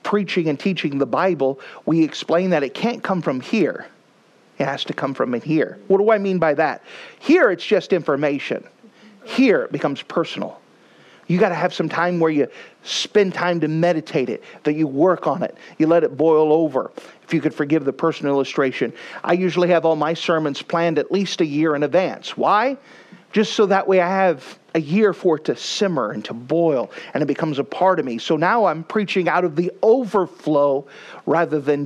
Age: 40-59